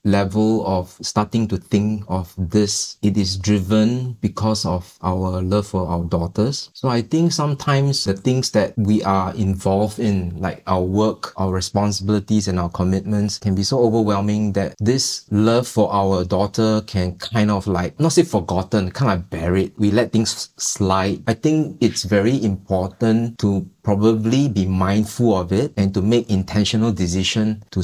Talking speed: 165 wpm